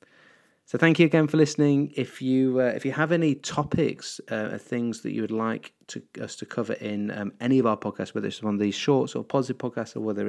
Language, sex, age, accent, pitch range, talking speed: English, male, 30-49, British, 105-130 Hz, 245 wpm